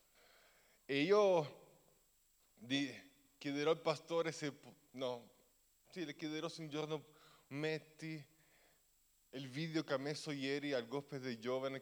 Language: Italian